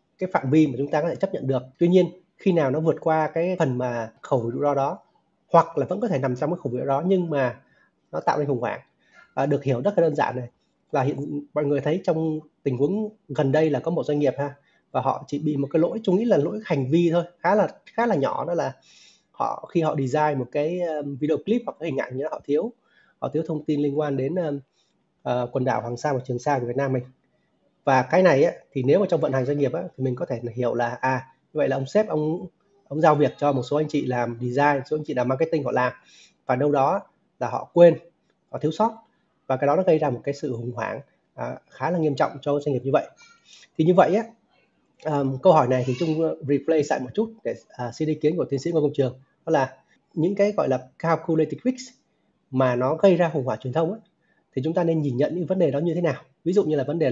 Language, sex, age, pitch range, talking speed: Vietnamese, male, 20-39, 135-170 Hz, 275 wpm